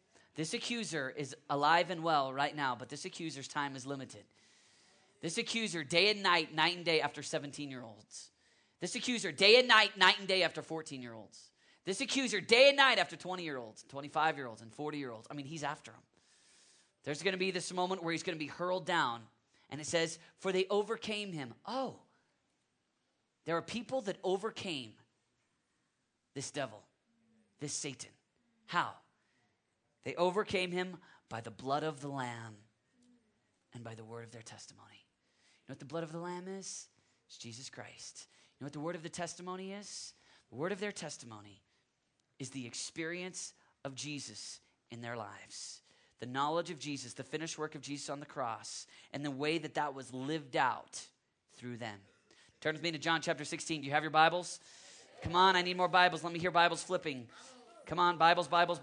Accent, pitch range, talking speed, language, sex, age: American, 135-180 Hz, 195 wpm, English, male, 30-49